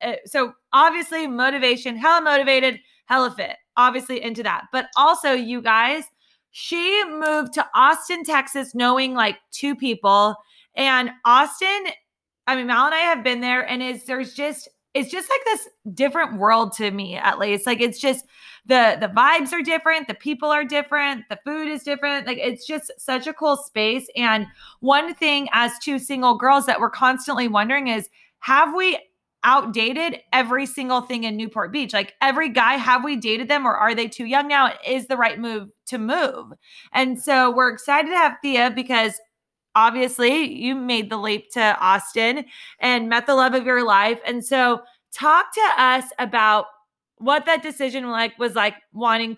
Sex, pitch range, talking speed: female, 230-285 Hz, 175 wpm